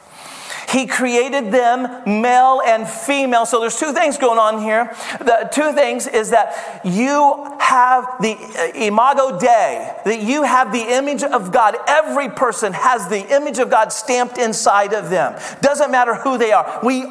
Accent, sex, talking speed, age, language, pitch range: American, male, 165 wpm, 40-59, English, 225-275 Hz